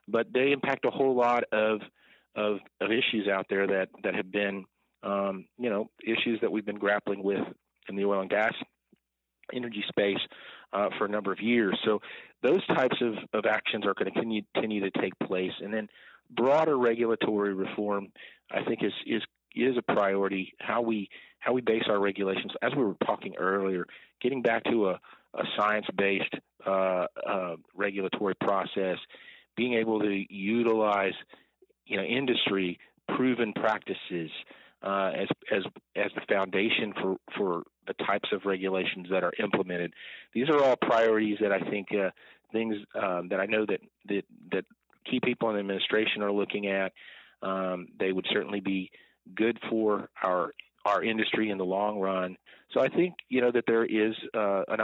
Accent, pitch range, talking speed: American, 95-110 Hz, 175 wpm